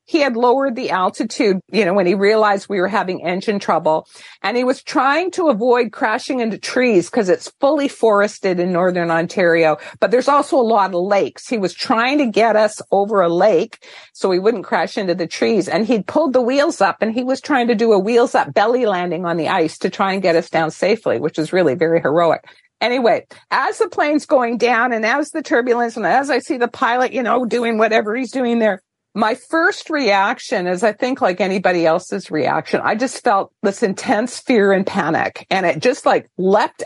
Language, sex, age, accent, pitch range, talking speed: English, female, 50-69, American, 185-255 Hz, 215 wpm